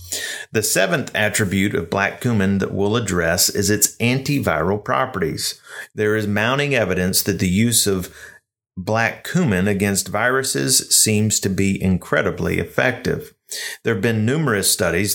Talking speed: 140 wpm